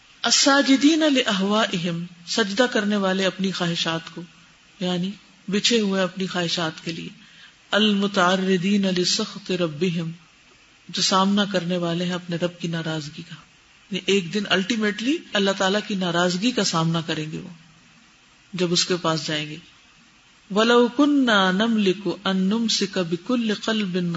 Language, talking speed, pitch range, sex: Urdu, 75 wpm, 175-225 Hz, female